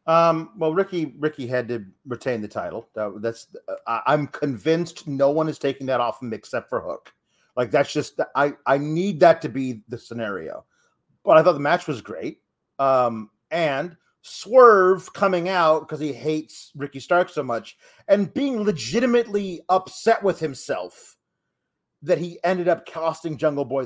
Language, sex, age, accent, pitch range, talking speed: English, male, 40-59, American, 140-190 Hz, 165 wpm